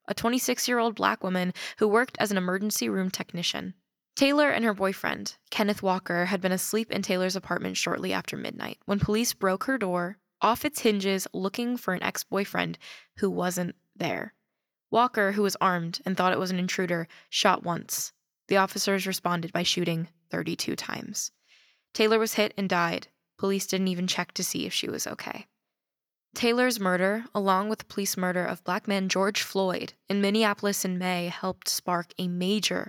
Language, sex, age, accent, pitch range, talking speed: English, female, 10-29, American, 175-205 Hz, 175 wpm